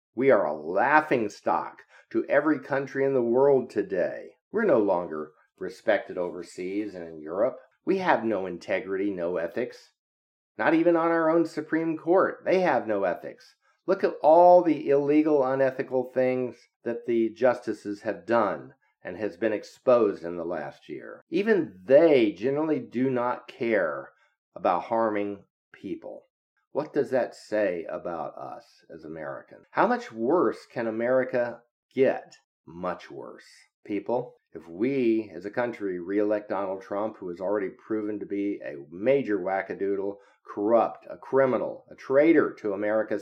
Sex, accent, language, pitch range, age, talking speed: male, American, English, 100-140 Hz, 50-69, 150 wpm